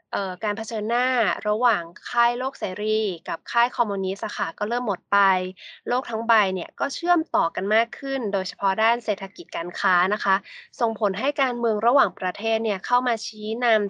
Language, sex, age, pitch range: Thai, female, 20-39, 200-250 Hz